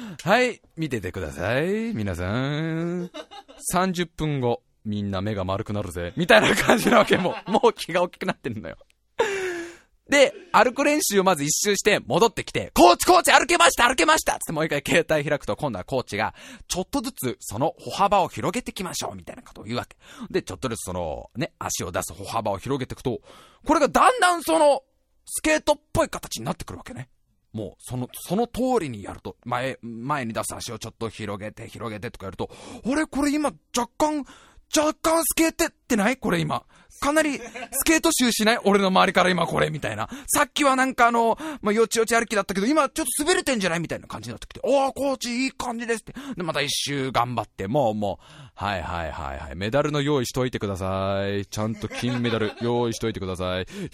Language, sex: Japanese, male